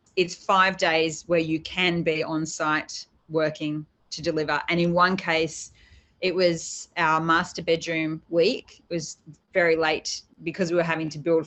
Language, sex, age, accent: English, female, 30-49, Australian